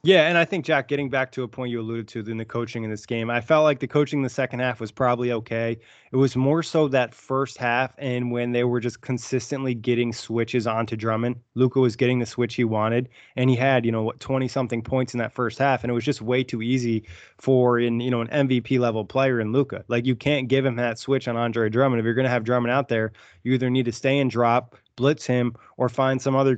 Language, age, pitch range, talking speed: English, 20-39, 120-135 Hz, 260 wpm